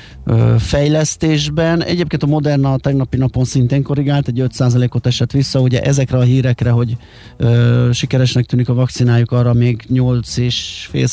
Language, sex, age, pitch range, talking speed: Hungarian, male, 30-49, 115-130 Hz, 140 wpm